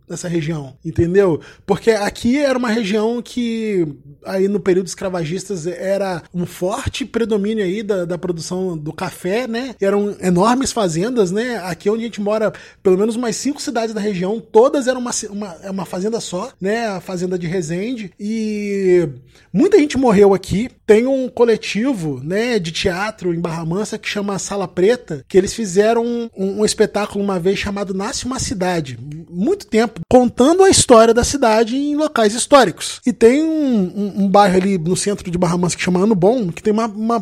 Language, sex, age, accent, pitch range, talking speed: Portuguese, male, 20-39, Brazilian, 185-240 Hz, 180 wpm